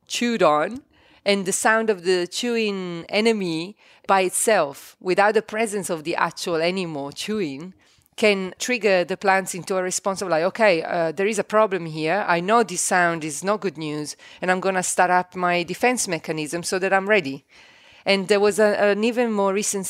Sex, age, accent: female, 30-49, Italian